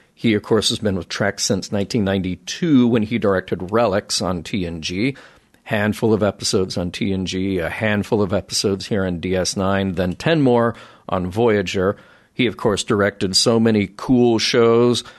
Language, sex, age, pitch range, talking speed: English, male, 40-59, 95-125 Hz, 160 wpm